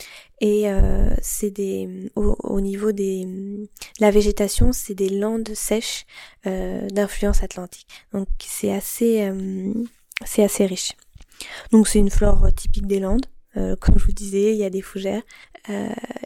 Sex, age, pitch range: female, 20-39, 195-220 Hz